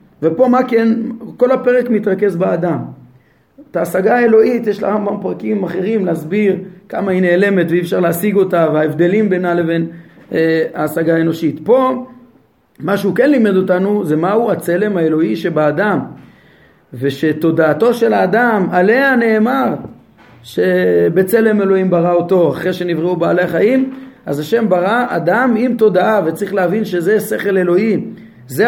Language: Hebrew